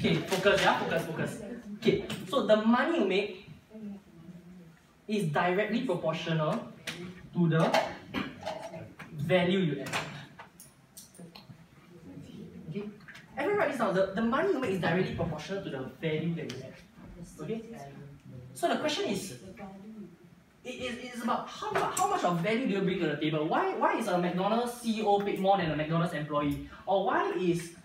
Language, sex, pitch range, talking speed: English, male, 165-215 Hz, 155 wpm